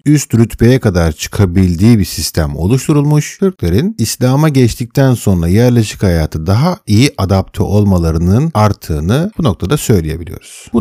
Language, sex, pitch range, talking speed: Turkish, male, 90-130 Hz, 120 wpm